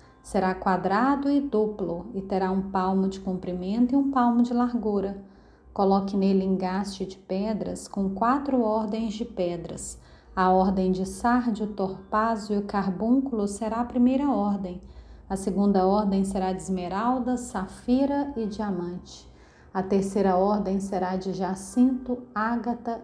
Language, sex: Portuguese, female